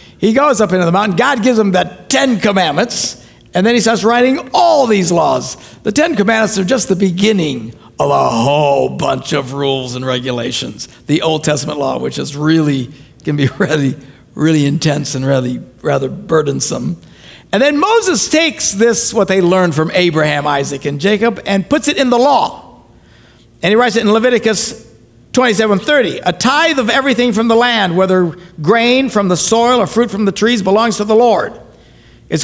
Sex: male